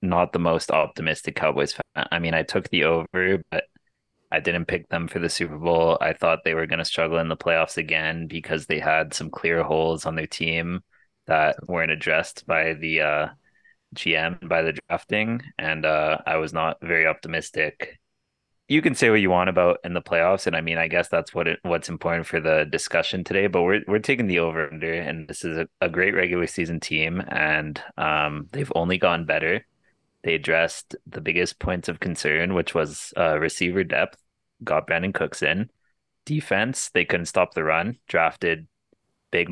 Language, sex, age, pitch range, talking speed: English, male, 20-39, 80-95 Hz, 195 wpm